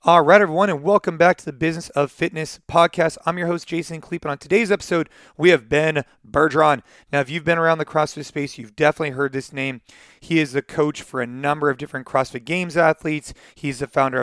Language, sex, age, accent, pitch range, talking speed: English, male, 30-49, American, 135-170 Hz, 225 wpm